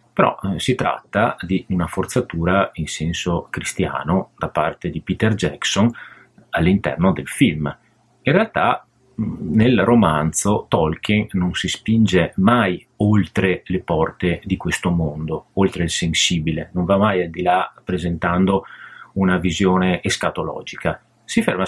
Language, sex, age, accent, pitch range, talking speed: Italian, male, 30-49, native, 90-115 Hz, 135 wpm